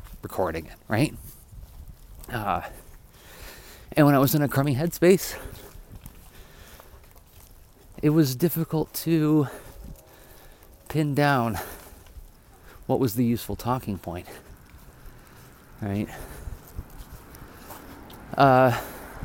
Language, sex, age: English, male, 30-49